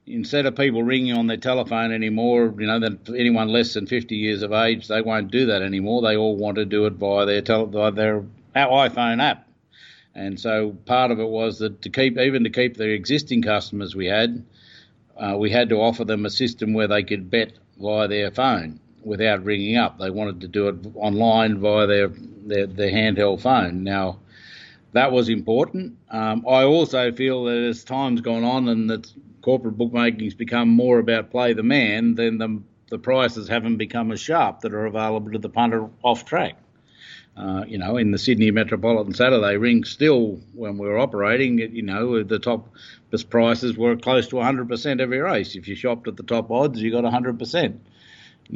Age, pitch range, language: 50-69, 105-120 Hz, English